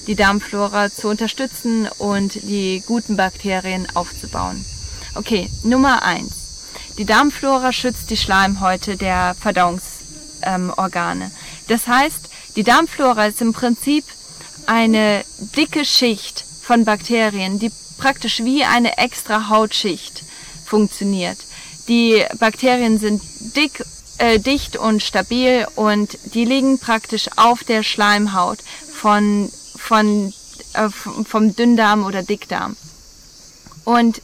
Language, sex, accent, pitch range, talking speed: German, female, German, 190-230 Hz, 105 wpm